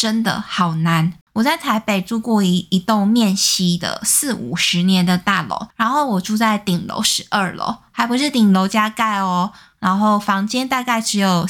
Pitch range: 185-225 Hz